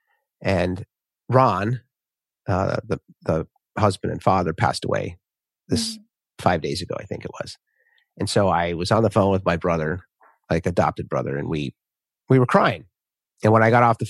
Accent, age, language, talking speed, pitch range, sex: American, 30-49, English, 180 wpm, 95-120 Hz, male